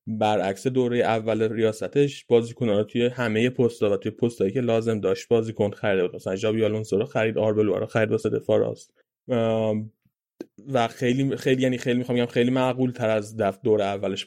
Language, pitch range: Persian, 105-125 Hz